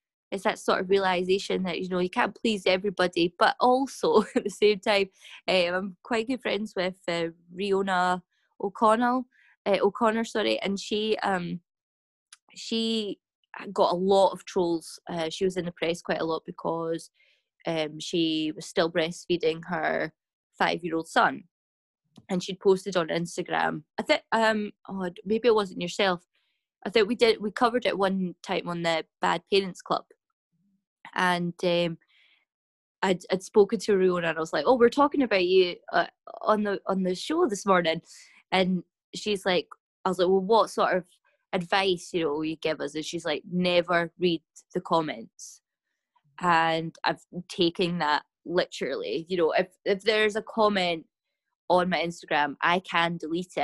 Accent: British